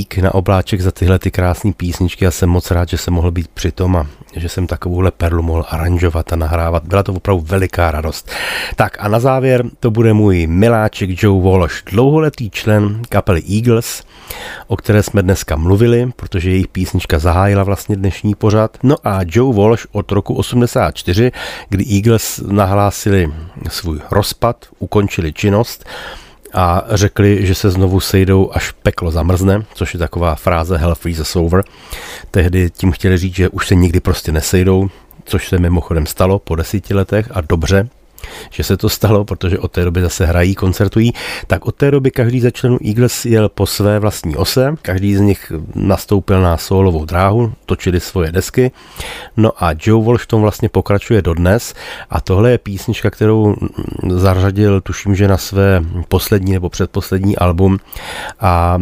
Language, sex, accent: Czech, male, native